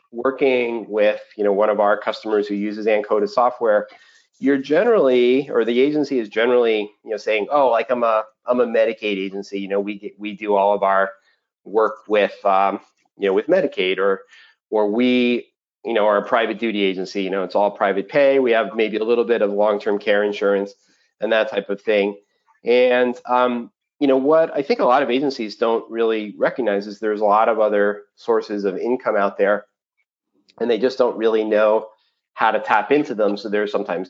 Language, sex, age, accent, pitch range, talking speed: English, male, 40-59, American, 100-125 Hz, 205 wpm